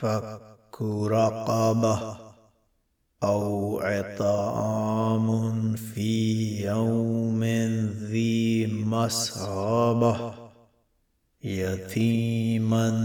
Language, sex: Arabic, male